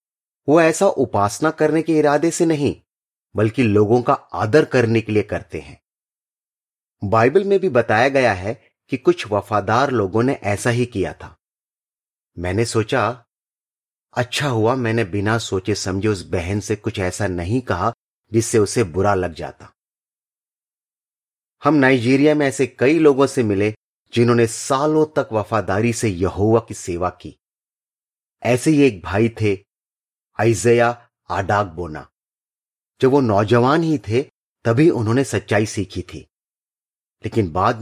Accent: native